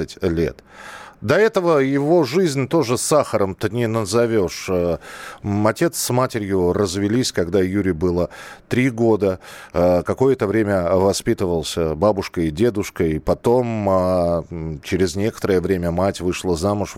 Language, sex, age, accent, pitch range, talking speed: Russian, male, 40-59, native, 95-130 Hz, 115 wpm